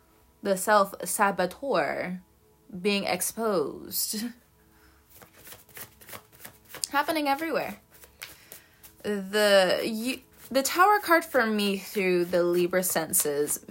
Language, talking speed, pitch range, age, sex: English, 70 wpm, 175-215 Hz, 20-39, female